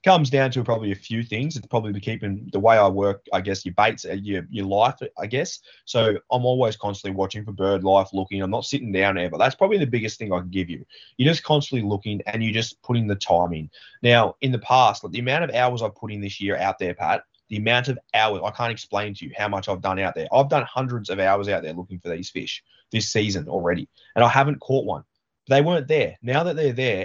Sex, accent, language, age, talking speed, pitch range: male, Australian, English, 20-39, 260 wpm, 100-140 Hz